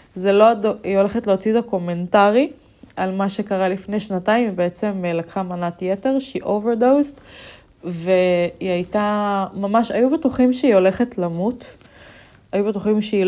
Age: 20-39